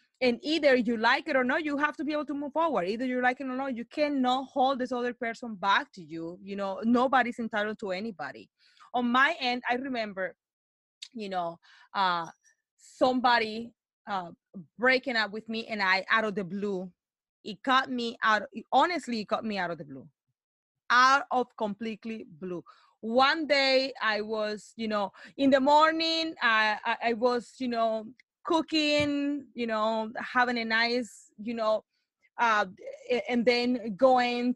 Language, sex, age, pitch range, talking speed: English, female, 30-49, 205-265 Hz, 175 wpm